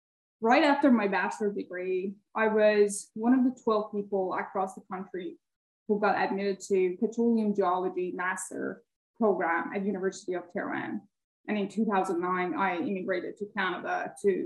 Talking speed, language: 145 wpm, English